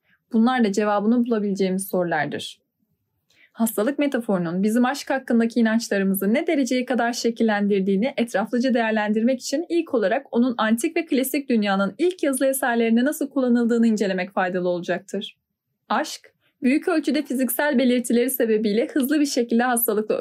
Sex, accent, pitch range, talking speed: female, native, 200-260 Hz, 130 wpm